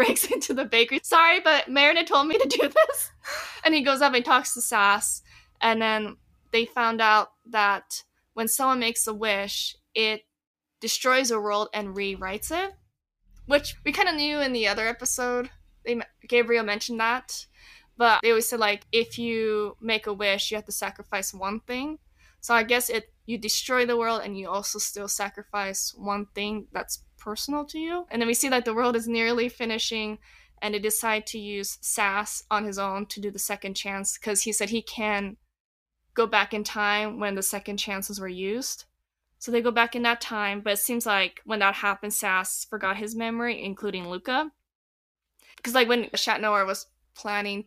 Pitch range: 205-240 Hz